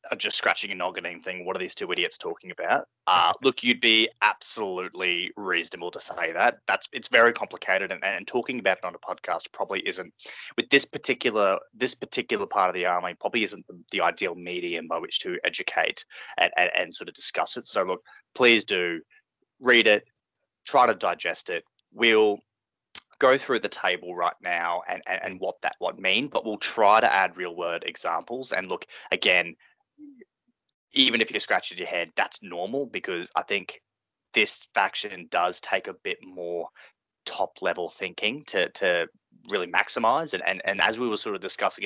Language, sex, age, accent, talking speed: English, male, 20-39, Australian, 190 wpm